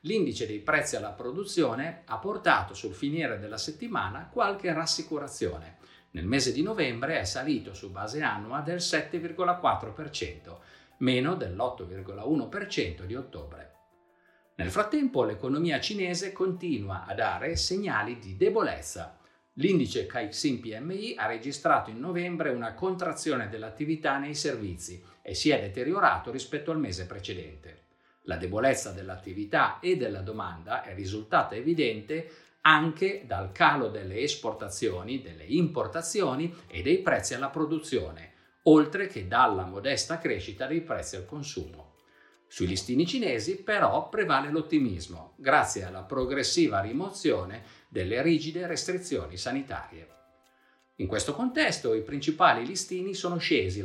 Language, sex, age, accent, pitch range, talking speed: Italian, male, 50-69, native, 105-170 Hz, 125 wpm